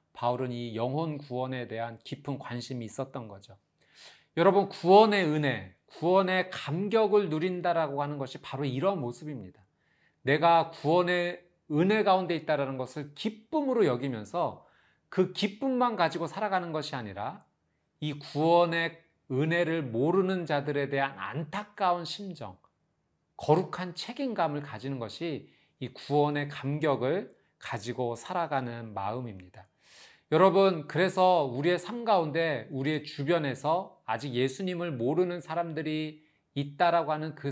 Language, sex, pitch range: Korean, male, 130-175 Hz